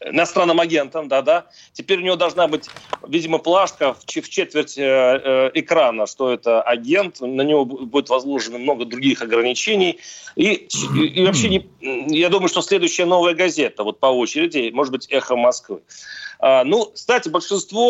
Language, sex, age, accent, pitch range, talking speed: Russian, male, 40-59, native, 135-195 Hz, 145 wpm